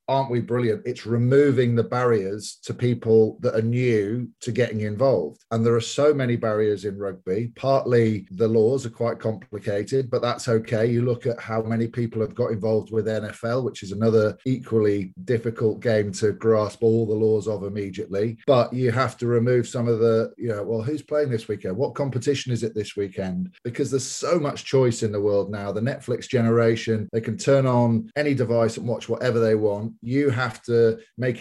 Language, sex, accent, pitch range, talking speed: English, male, British, 110-125 Hz, 200 wpm